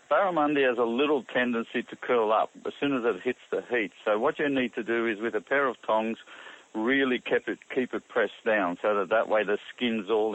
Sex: male